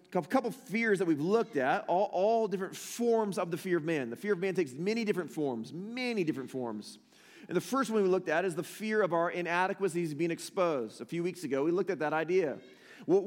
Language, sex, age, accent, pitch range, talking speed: English, male, 30-49, American, 170-200 Hz, 235 wpm